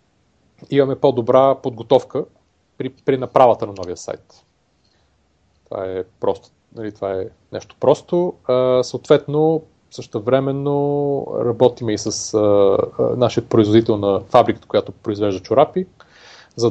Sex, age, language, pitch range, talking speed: male, 30-49, Bulgarian, 110-130 Hz, 120 wpm